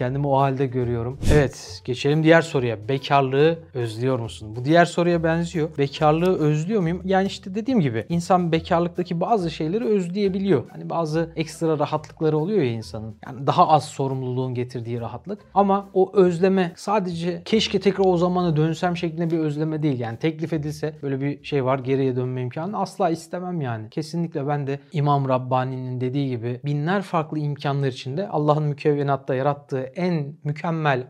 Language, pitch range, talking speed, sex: Turkish, 135-170 Hz, 160 wpm, male